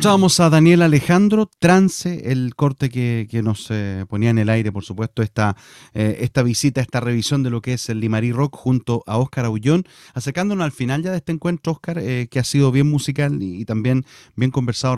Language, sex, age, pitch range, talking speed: Spanish, male, 30-49, 120-155 Hz, 210 wpm